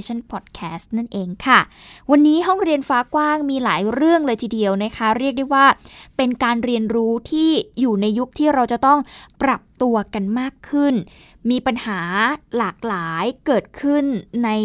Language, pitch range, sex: Thai, 210-270 Hz, female